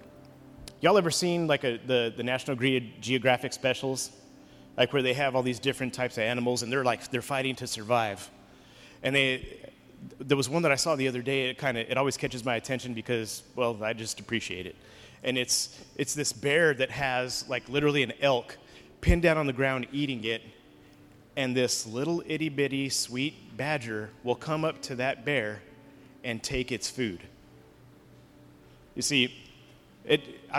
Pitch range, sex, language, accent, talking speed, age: 120-145 Hz, male, English, American, 175 wpm, 30-49